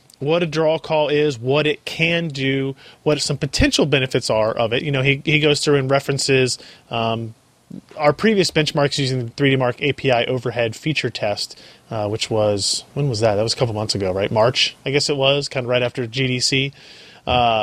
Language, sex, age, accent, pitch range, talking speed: English, male, 30-49, American, 120-150 Hz, 210 wpm